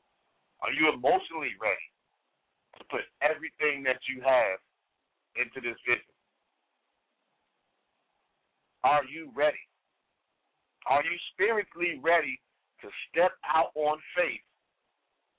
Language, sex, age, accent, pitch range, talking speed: English, male, 50-69, American, 130-165 Hz, 100 wpm